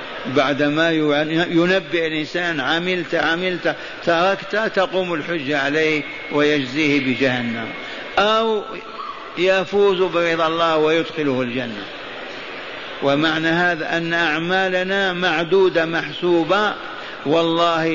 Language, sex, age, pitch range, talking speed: Arabic, male, 50-69, 155-185 Hz, 80 wpm